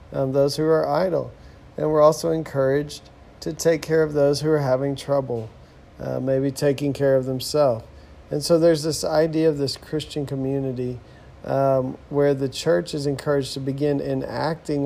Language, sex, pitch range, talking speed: English, male, 125-150 Hz, 170 wpm